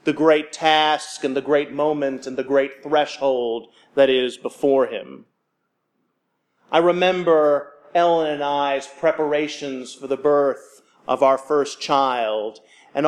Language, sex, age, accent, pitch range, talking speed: English, male, 40-59, American, 140-170 Hz, 135 wpm